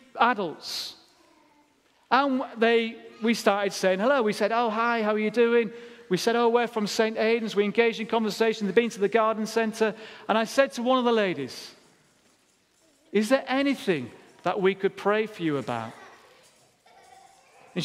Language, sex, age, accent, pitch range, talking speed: English, male, 40-59, British, 185-235 Hz, 170 wpm